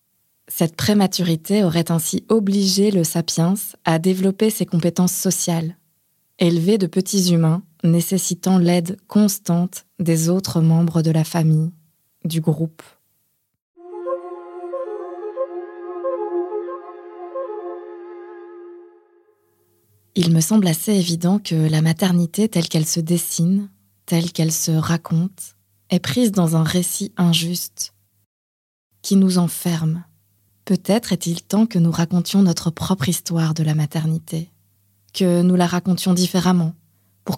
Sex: female